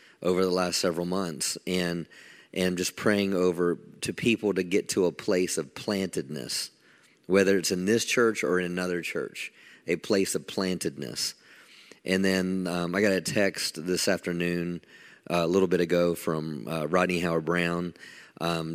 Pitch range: 80-95 Hz